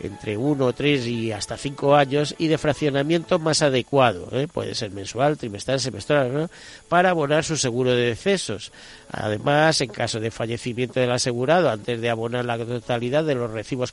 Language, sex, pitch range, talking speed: Spanish, male, 115-145 Hz, 170 wpm